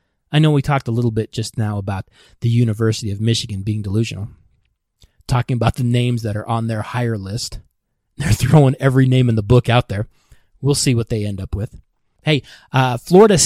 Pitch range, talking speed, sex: 115-155 Hz, 200 wpm, male